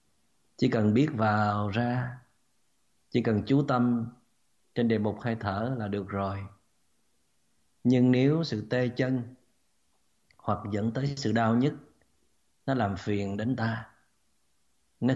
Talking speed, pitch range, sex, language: 135 wpm, 100-120 Hz, male, Vietnamese